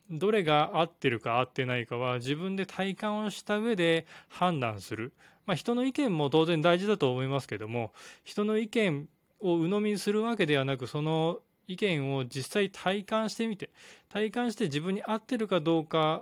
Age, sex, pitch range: 20-39, male, 135-185 Hz